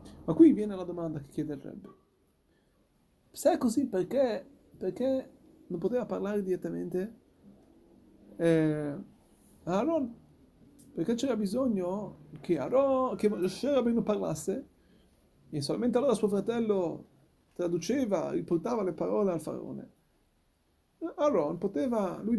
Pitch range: 165-240 Hz